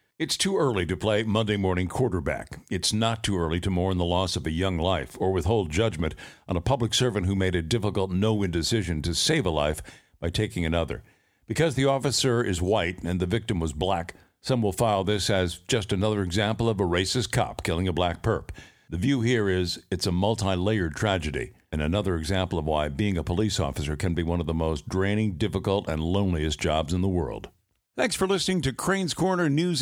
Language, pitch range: English, 95-140 Hz